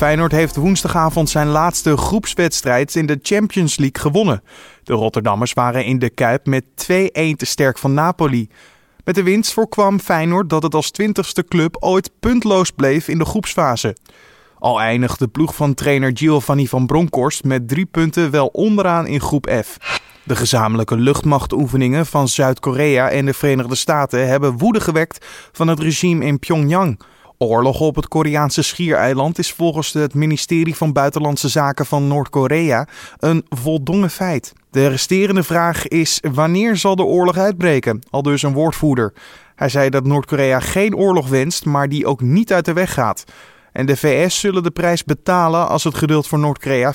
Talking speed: 165 wpm